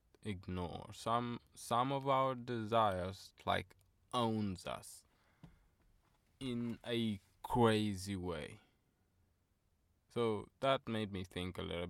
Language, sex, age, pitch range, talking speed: English, male, 20-39, 95-125 Hz, 100 wpm